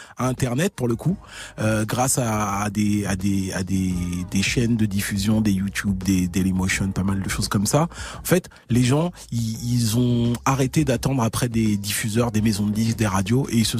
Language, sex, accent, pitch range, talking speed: French, male, French, 105-130 Hz, 220 wpm